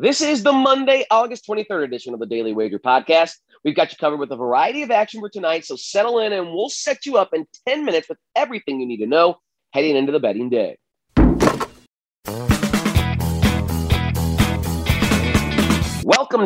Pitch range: 140-205 Hz